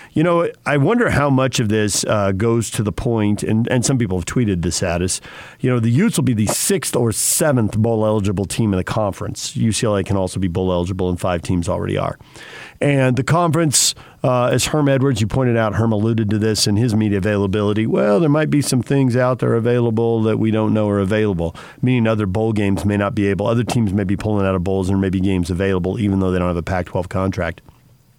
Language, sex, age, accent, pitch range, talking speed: English, male, 50-69, American, 105-145 Hz, 235 wpm